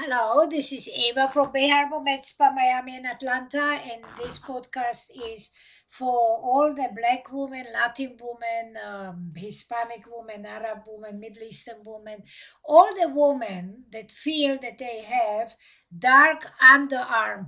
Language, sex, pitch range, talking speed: English, female, 230-290 Hz, 135 wpm